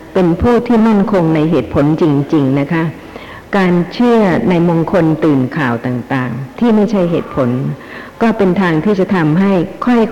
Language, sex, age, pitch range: Thai, female, 60-79, 145-190 Hz